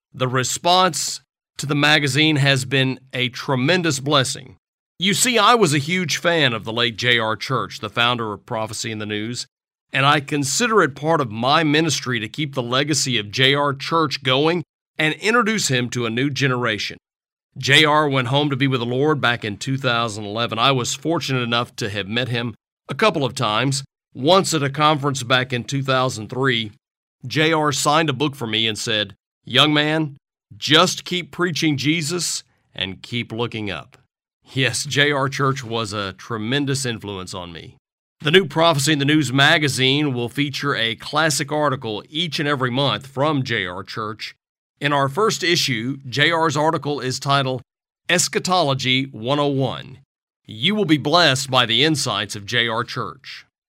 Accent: American